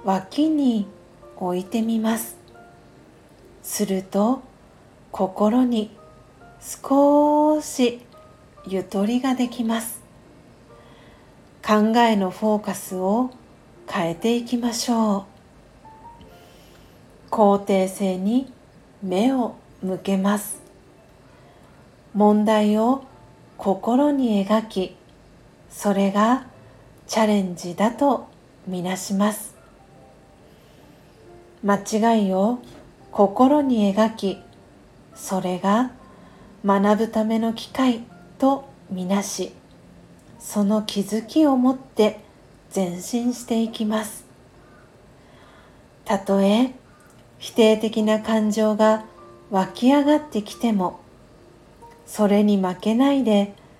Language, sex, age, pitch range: Japanese, female, 50-69, 195-235 Hz